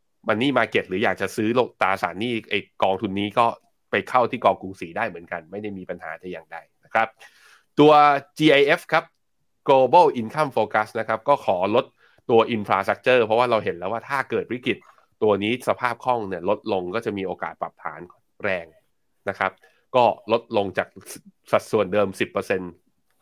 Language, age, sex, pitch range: Thai, 20-39, male, 100-130 Hz